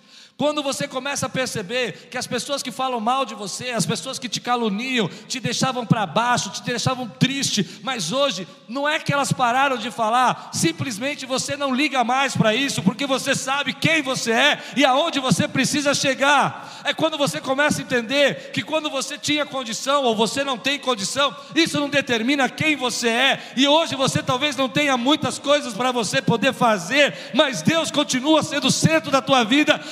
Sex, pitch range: male, 200-280 Hz